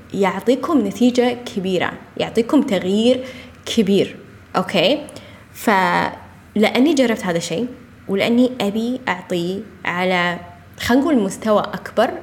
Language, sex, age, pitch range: Arabic, female, 10-29, 185-245 Hz